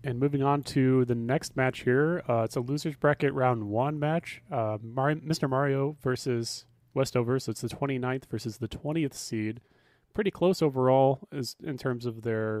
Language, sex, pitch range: English, male, 110-135 Hz